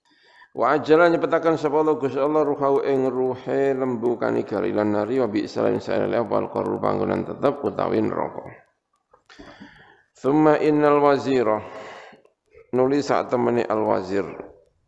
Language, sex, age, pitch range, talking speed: Indonesian, male, 50-69, 110-150 Hz, 110 wpm